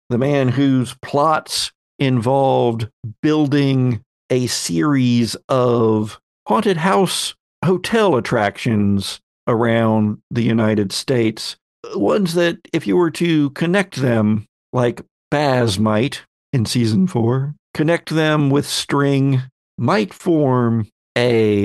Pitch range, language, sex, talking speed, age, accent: 110-150 Hz, English, male, 105 wpm, 50-69, American